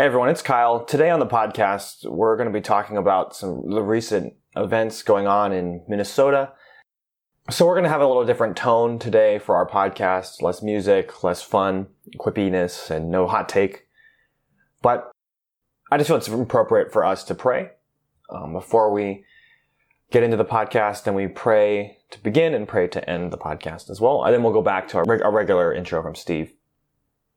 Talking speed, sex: 190 wpm, male